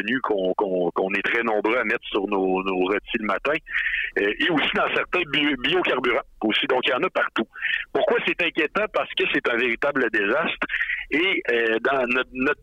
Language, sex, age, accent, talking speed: French, male, 60-79, French, 190 wpm